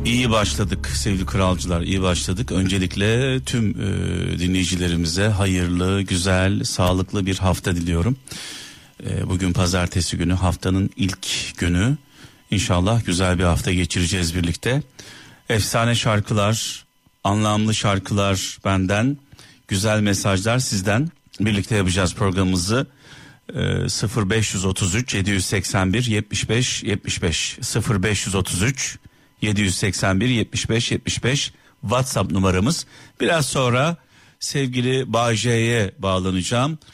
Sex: male